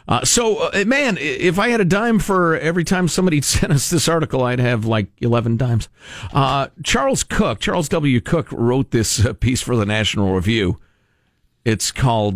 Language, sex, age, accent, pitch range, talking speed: English, male, 50-69, American, 105-160 Hz, 185 wpm